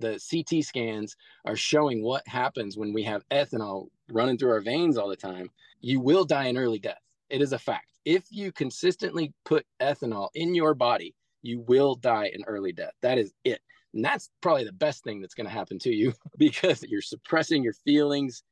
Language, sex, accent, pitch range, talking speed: English, male, American, 120-170 Hz, 200 wpm